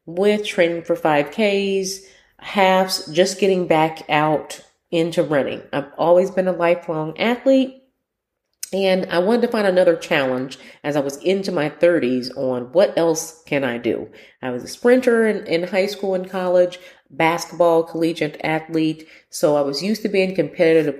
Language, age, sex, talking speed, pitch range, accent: English, 40-59, female, 160 wpm, 145-200 Hz, American